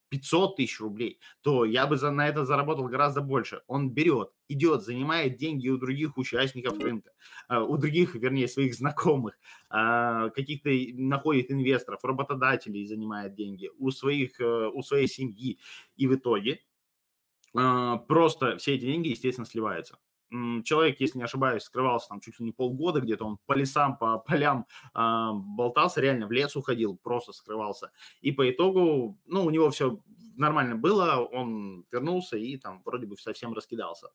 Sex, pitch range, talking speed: male, 120-145 Hz, 150 wpm